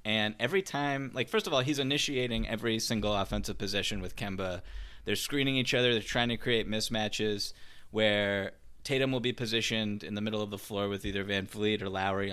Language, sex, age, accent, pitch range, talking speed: English, male, 20-39, American, 100-120 Hz, 200 wpm